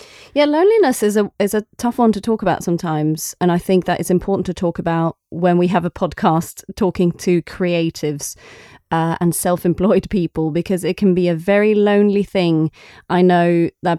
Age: 30-49